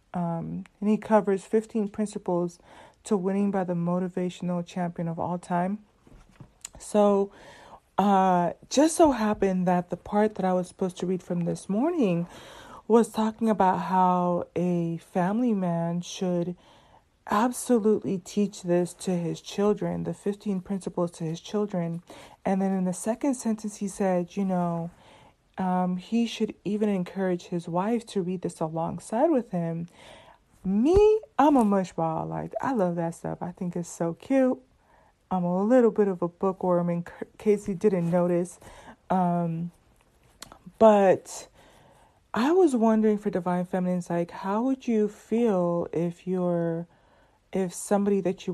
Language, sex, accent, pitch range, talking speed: English, female, American, 175-210 Hz, 150 wpm